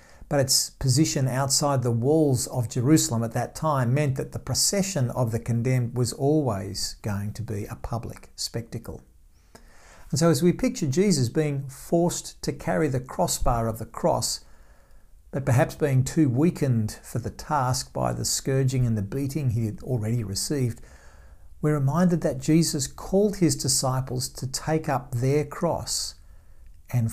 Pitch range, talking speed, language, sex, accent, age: 110-150 Hz, 160 wpm, English, male, Australian, 50-69